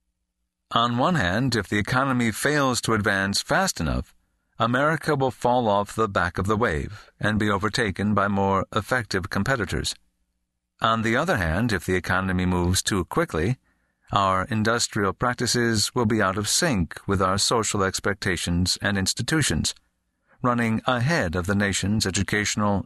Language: English